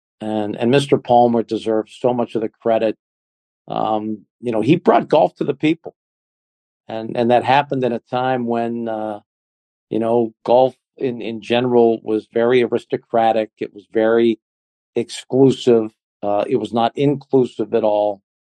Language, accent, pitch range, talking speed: English, American, 105-125 Hz, 155 wpm